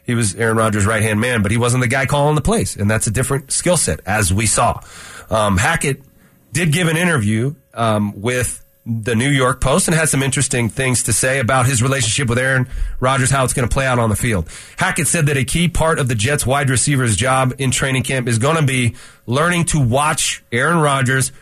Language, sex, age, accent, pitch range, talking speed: English, male, 30-49, American, 115-145 Hz, 225 wpm